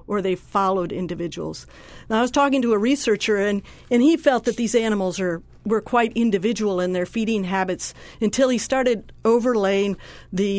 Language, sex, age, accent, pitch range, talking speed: English, female, 50-69, American, 185-225 Hz, 175 wpm